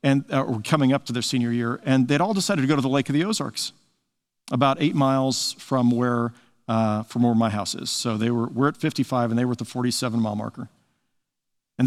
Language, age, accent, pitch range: English, 50-69, American, 120-140 Hz